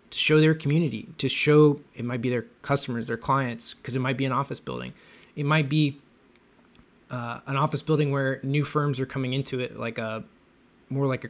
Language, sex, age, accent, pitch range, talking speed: English, male, 20-39, American, 125-145 Hz, 205 wpm